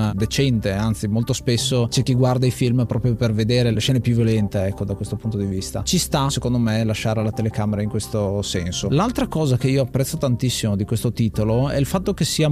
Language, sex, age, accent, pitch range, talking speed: Italian, male, 30-49, native, 110-135 Hz, 220 wpm